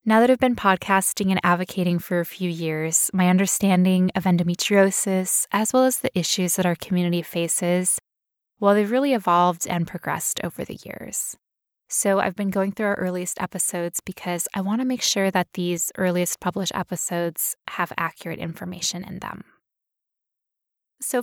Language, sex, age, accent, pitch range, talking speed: English, female, 10-29, American, 180-220 Hz, 165 wpm